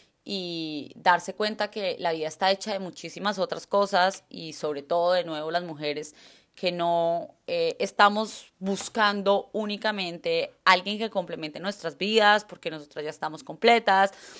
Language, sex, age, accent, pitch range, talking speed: Spanish, female, 20-39, Colombian, 170-210 Hz, 145 wpm